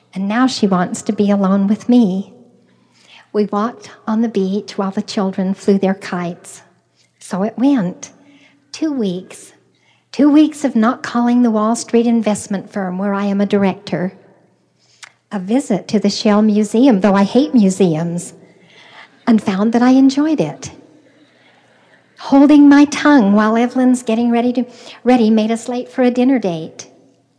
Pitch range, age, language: 190-235 Hz, 50-69, English